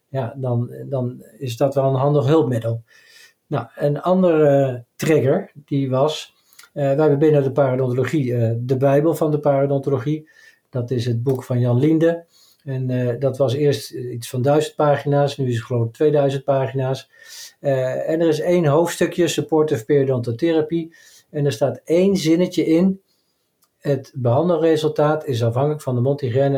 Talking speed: 160 wpm